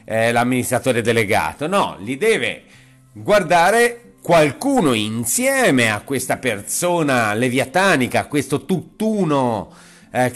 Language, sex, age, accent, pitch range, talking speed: Italian, male, 40-59, native, 120-160 Hz, 85 wpm